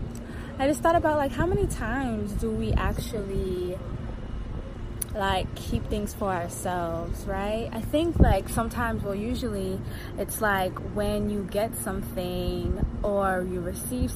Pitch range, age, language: 165-235 Hz, 20-39, English